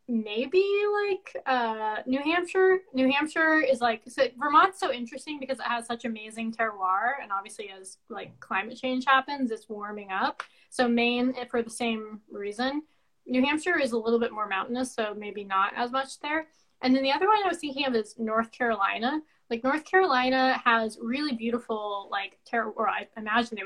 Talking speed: 180 wpm